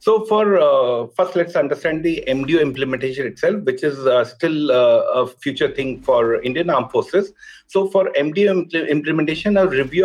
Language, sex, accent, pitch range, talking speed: English, male, Indian, 150-195 Hz, 175 wpm